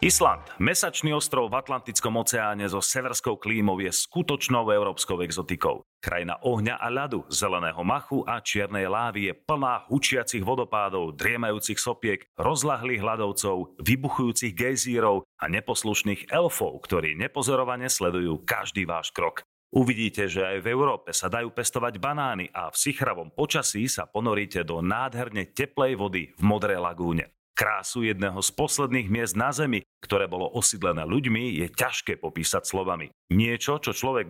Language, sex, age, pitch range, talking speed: Slovak, male, 40-59, 100-130 Hz, 140 wpm